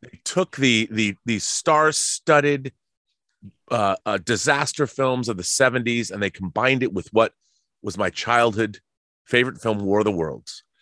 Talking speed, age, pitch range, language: 155 wpm, 30-49, 105-125 Hz, English